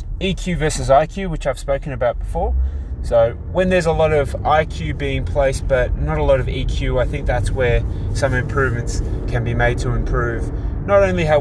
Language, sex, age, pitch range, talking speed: English, male, 20-39, 95-135 Hz, 195 wpm